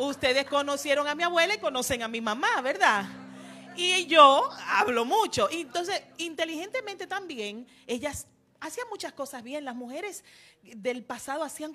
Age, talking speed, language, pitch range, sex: 40-59, 145 wpm, Spanish, 190-300 Hz, female